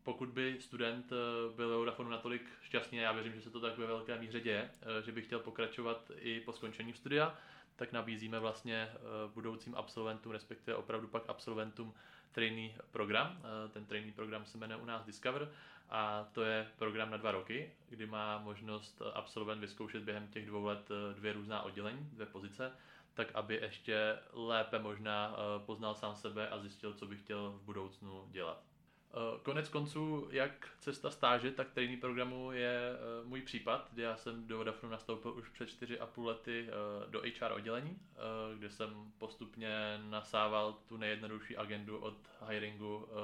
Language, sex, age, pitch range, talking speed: Czech, male, 20-39, 105-115 Hz, 160 wpm